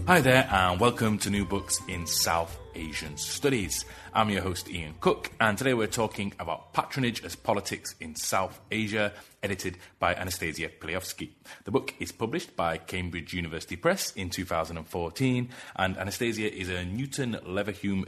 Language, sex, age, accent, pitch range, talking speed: English, male, 30-49, British, 95-130 Hz, 155 wpm